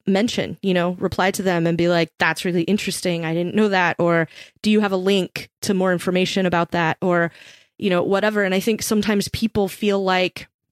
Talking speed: 215 wpm